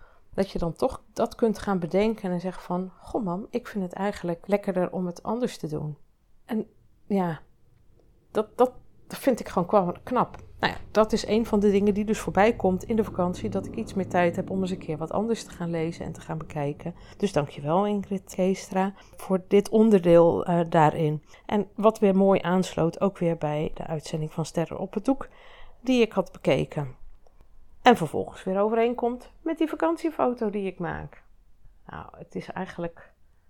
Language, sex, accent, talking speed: Dutch, female, Dutch, 190 wpm